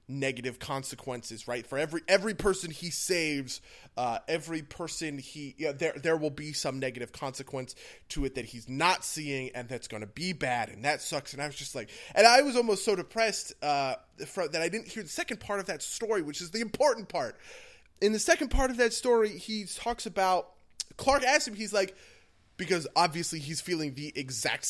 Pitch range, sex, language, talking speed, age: 135-195 Hz, male, English, 205 wpm, 20-39